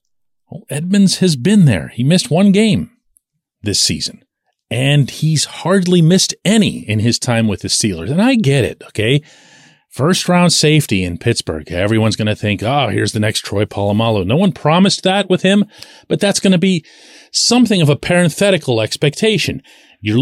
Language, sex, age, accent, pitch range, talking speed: English, male, 40-59, American, 115-180 Hz, 170 wpm